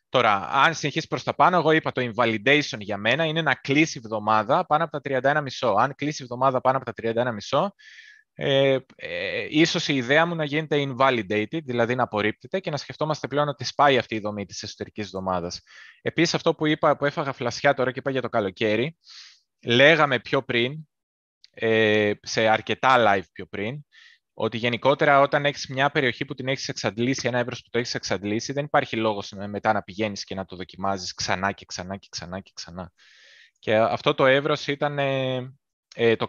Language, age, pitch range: Greek, 20-39, 105-145 Hz